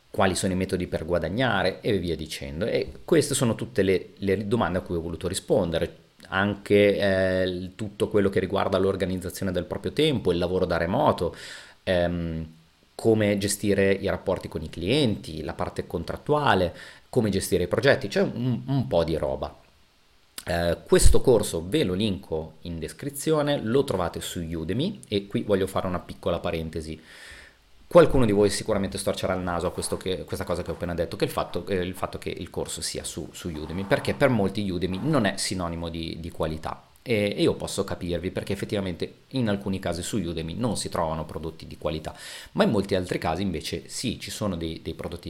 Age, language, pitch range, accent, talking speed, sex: 30-49, Italian, 85-100 Hz, native, 190 wpm, male